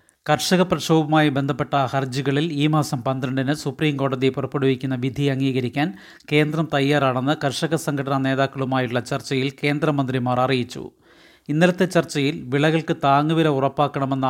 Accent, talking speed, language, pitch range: native, 100 wpm, Malayalam, 135-155 Hz